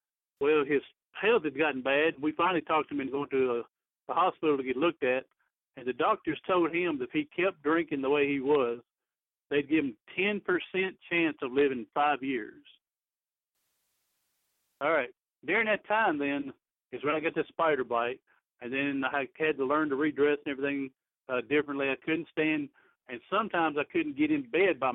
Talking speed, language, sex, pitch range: 190 wpm, English, male, 135-170 Hz